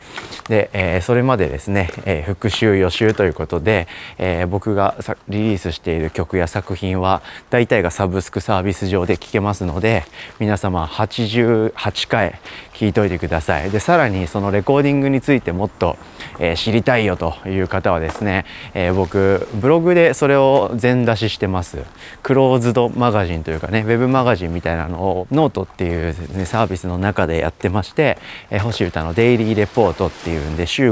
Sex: male